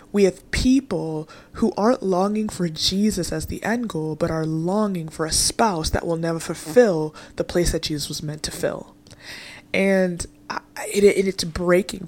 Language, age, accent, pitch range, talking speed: English, 20-39, American, 165-200 Hz, 180 wpm